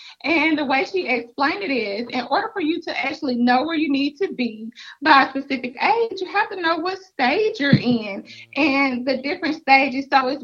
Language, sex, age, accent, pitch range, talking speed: English, female, 30-49, American, 255-325 Hz, 215 wpm